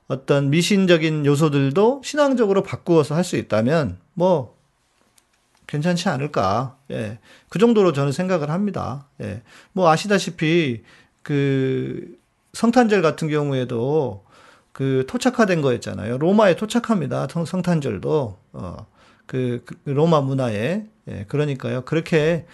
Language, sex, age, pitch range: Korean, male, 40-59, 130-175 Hz